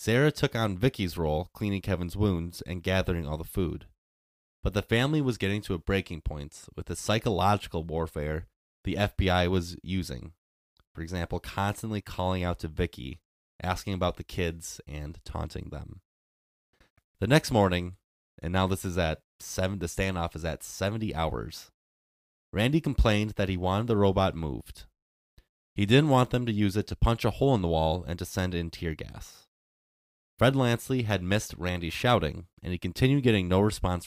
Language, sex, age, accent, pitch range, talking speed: English, male, 20-39, American, 80-105 Hz, 175 wpm